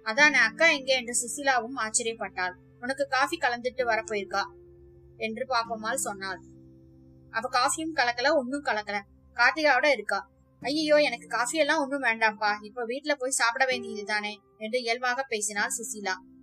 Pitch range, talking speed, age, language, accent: 205-265 Hz, 130 wpm, 20-39, Tamil, native